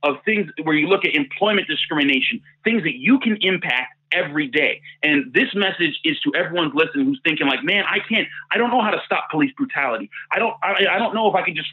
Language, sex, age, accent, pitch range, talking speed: English, male, 30-49, American, 170-245 Hz, 235 wpm